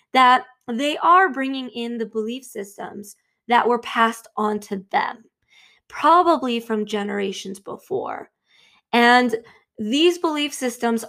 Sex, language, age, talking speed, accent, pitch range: female, English, 20-39, 120 wpm, American, 220-260 Hz